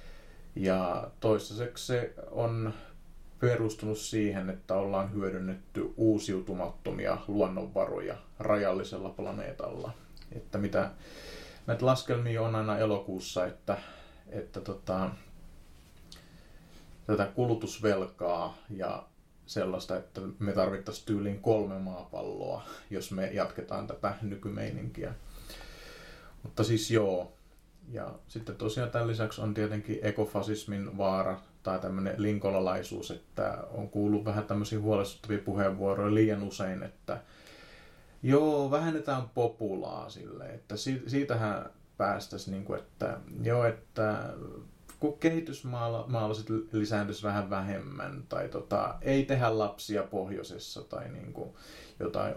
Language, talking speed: Finnish, 100 wpm